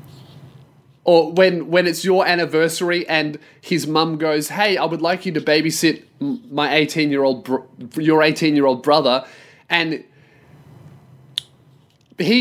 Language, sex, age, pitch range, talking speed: English, male, 20-39, 130-160 Hz, 120 wpm